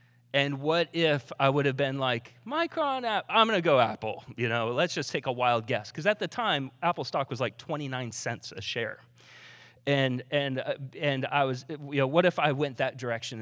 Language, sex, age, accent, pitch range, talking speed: English, male, 30-49, American, 125-165 Hz, 210 wpm